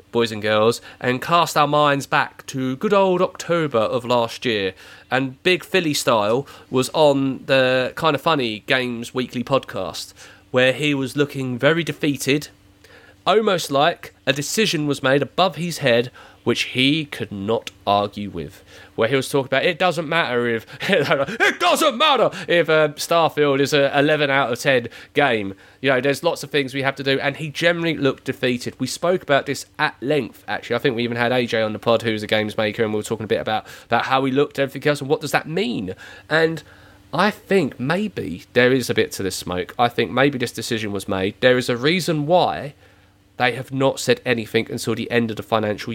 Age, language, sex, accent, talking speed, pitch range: 30-49, English, male, British, 210 wpm, 115-150 Hz